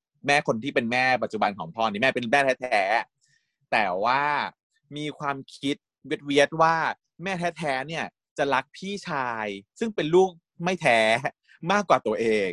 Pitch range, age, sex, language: 125-165 Hz, 20-39, male, Thai